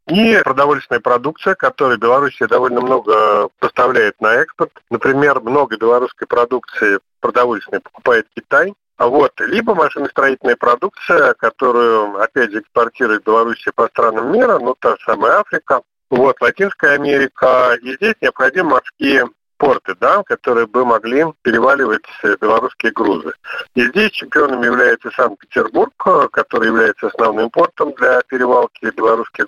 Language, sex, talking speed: Russian, male, 125 wpm